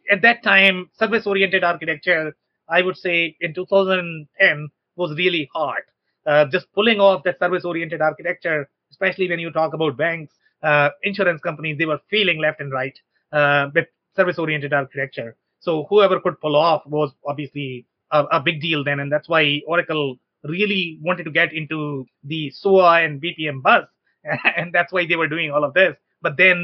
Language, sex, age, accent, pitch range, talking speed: English, male, 30-49, Indian, 150-190 Hz, 170 wpm